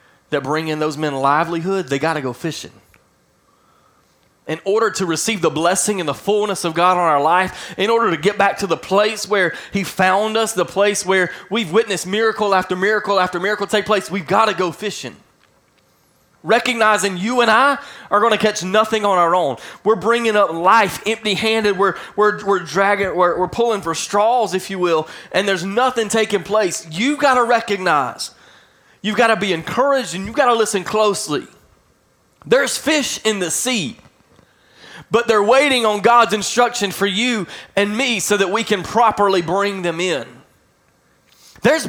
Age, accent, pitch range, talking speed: 20-39, American, 180-225 Hz, 180 wpm